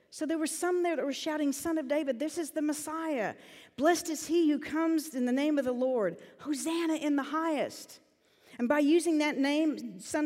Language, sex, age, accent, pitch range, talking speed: English, female, 50-69, American, 220-300 Hz, 210 wpm